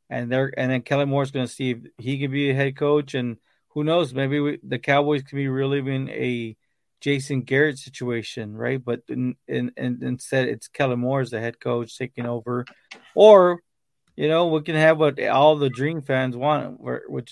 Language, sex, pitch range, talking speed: English, male, 120-140 Hz, 210 wpm